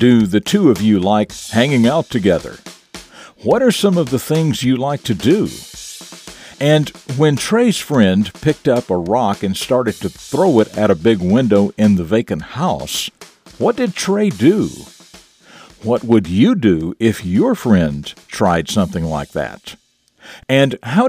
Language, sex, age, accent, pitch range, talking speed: English, male, 50-69, American, 100-155 Hz, 160 wpm